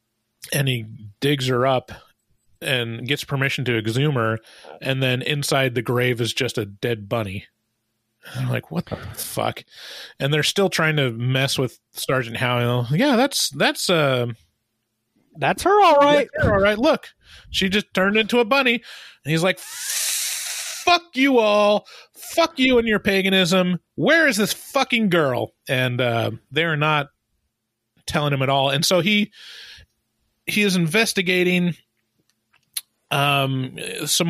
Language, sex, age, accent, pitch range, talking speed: English, male, 30-49, American, 125-180 Hz, 140 wpm